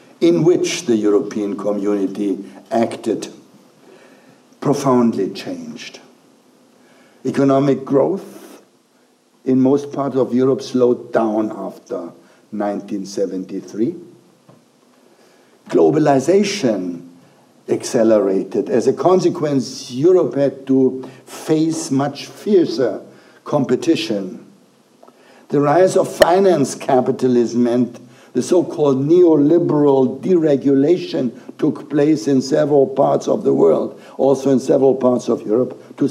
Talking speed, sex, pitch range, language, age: 90 wpm, male, 120-155 Hz, English, 60-79